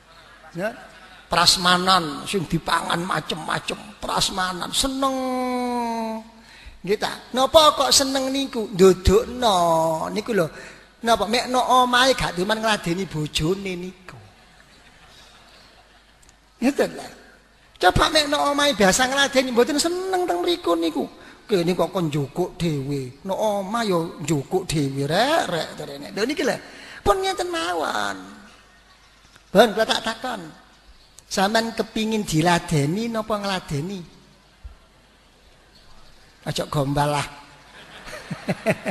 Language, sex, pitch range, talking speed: Indonesian, male, 170-250 Hz, 65 wpm